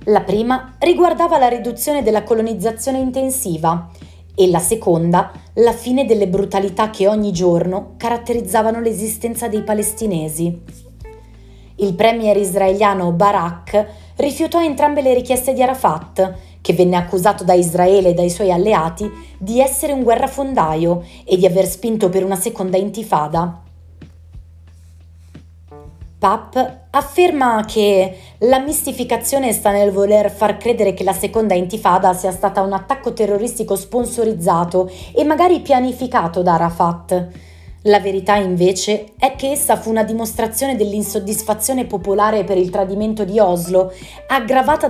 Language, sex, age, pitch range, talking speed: Italian, female, 30-49, 175-230 Hz, 125 wpm